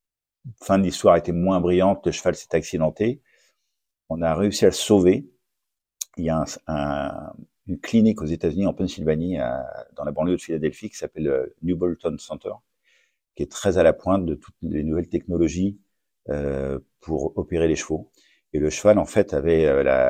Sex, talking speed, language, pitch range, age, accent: male, 185 wpm, French, 75-95 Hz, 50-69, French